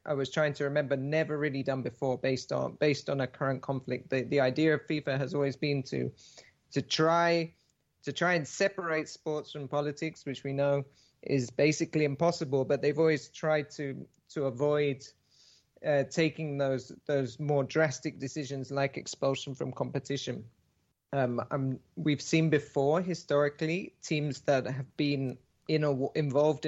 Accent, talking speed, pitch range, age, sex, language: British, 160 wpm, 135-155 Hz, 30-49, male, English